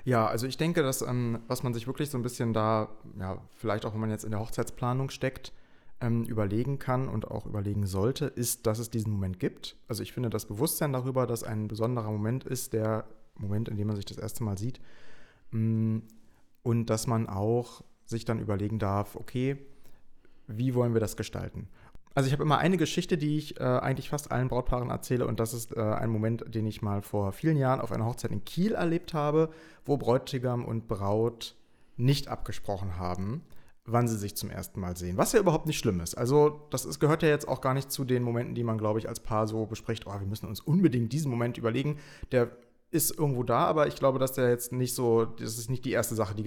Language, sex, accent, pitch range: German, male, German, 110-130 Hz